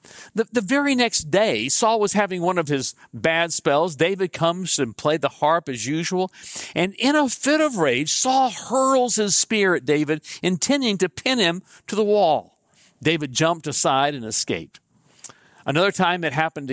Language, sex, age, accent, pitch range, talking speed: English, male, 50-69, American, 135-195 Hz, 175 wpm